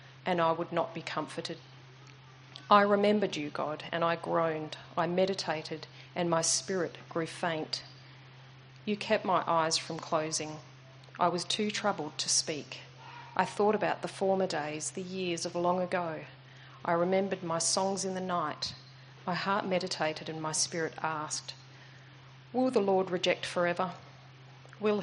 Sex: female